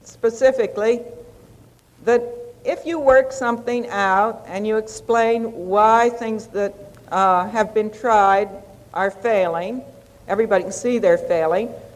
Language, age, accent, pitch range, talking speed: English, 60-79, American, 205-260 Hz, 120 wpm